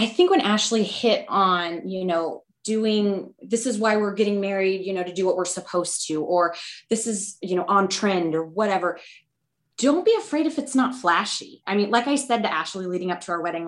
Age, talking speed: 20-39, 225 wpm